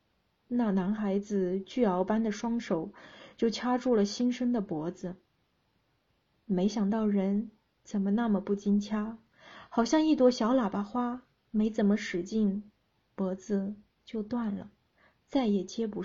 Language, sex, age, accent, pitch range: Chinese, female, 20-39, native, 200-245 Hz